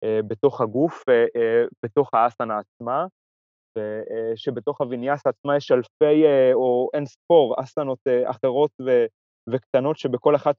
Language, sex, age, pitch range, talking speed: Hebrew, male, 20-39, 110-155 Hz, 100 wpm